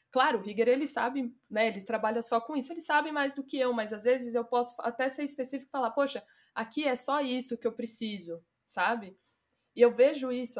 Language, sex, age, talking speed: Portuguese, female, 20-39, 220 wpm